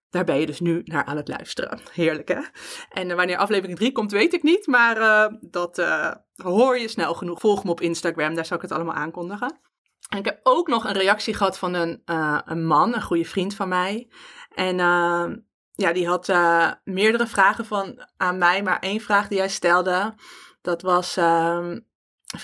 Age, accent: 20-39, Dutch